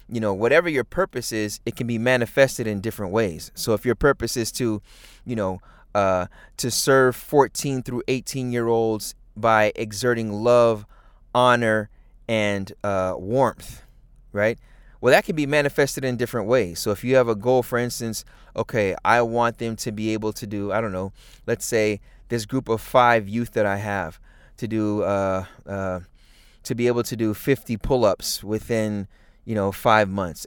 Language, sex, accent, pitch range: English, male, American, 105-130 Hz